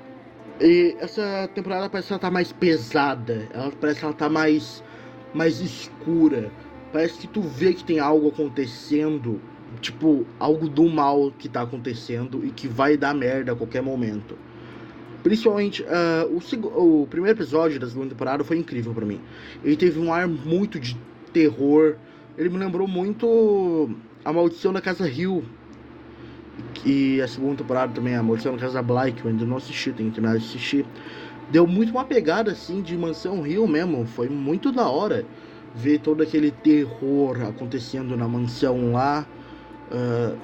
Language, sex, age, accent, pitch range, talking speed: Portuguese, male, 20-39, Brazilian, 125-170 Hz, 160 wpm